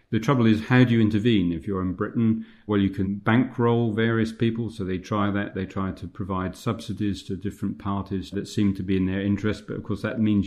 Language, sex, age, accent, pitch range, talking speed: English, male, 40-59, British, 95-110 Hz, 235 wpm